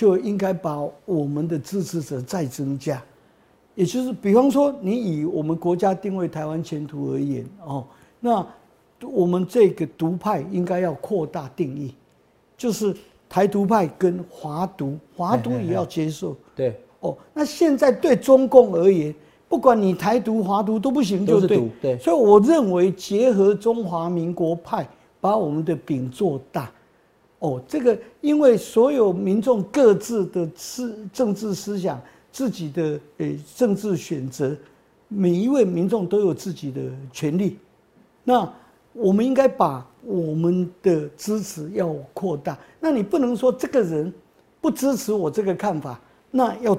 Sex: male